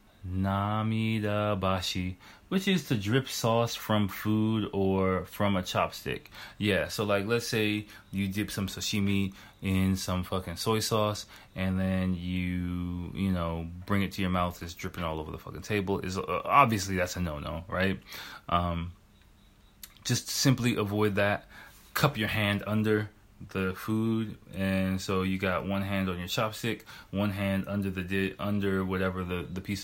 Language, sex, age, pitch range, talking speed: English, male, 20-39, 95-105 Hz, 165 wpm